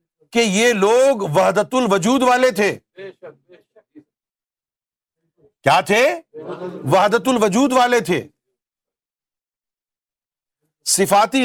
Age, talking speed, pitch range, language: 50-69, 70 wpm, 160-220 Hz, Urdu